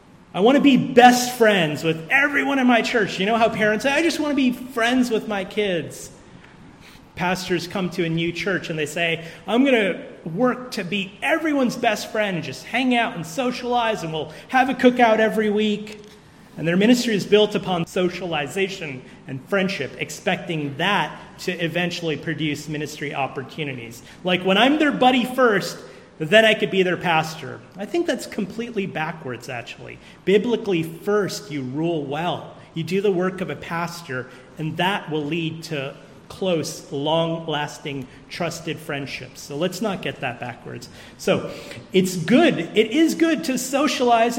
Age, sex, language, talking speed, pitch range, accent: 30-49, male, English, 170 wpm, 155-220 Hz, American